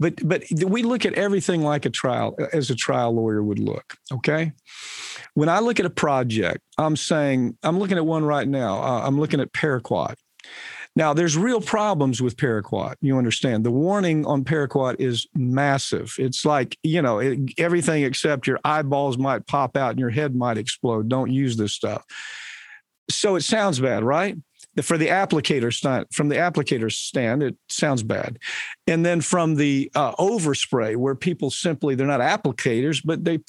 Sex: male